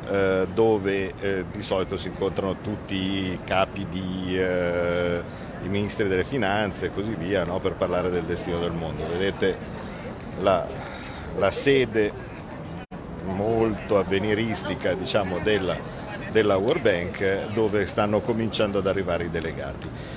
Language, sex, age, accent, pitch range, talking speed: Italian, male, 50-69, native, 95-115 Hz, 120 wpm